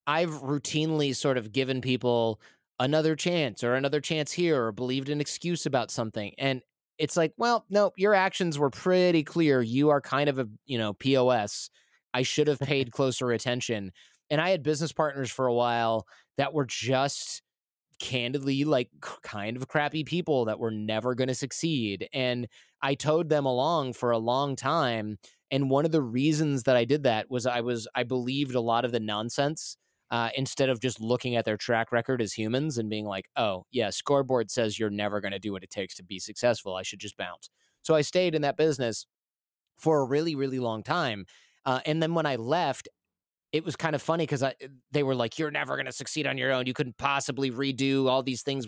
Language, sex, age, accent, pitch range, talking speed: English, male, 20-39, American, 115-150 Hz, 210 wpm